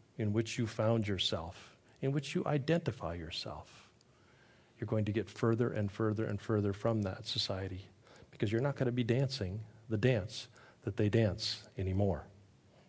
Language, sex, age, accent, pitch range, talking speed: English, male, 40-59, American, 105-135 Hz, 165 wpm